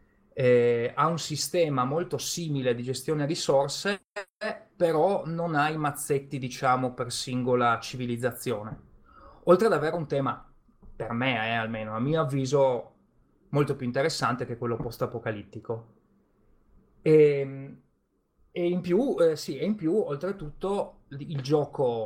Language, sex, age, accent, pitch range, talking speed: Italian, male, 30-49, native, 125-155 Hz, 130 wpm